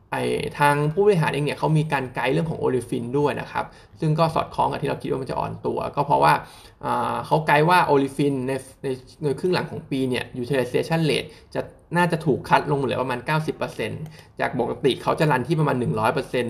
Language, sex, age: Thai, male, 20-39